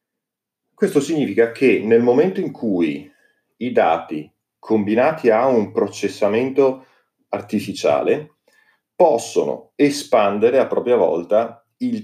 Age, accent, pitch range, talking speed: 40-59, native, 105-145 Hz, 100 wpm